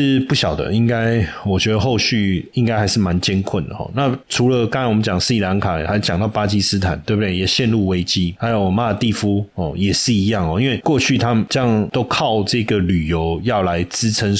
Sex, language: male, Chinese